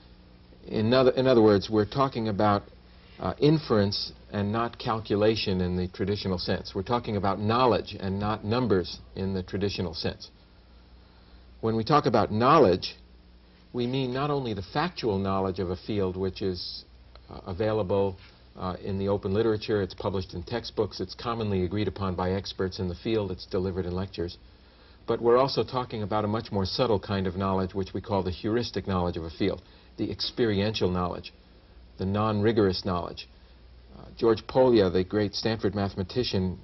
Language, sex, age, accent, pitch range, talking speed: English, male, 60-79, American, 90-110 Hz, 165 wpm